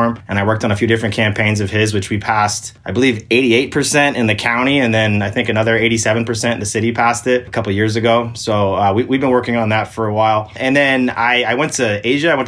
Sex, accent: male, American